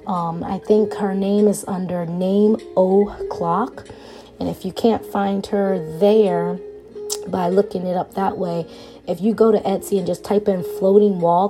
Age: 20-39